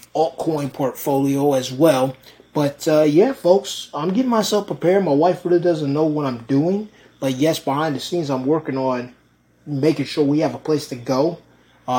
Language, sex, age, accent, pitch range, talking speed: English, male, 20-39, American, 130-150 Hz, 185 wpm